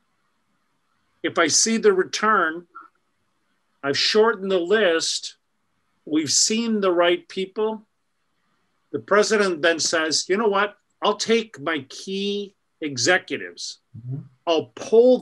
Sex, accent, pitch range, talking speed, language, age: male, American, 155-220 Hz, 110 wpm, English, 50-69